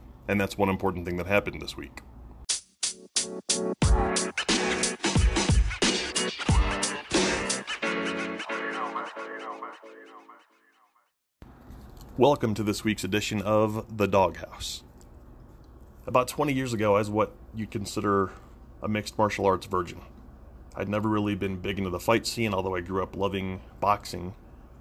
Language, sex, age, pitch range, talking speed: English, male, 30-49, 90-105 Hz, 110 wpm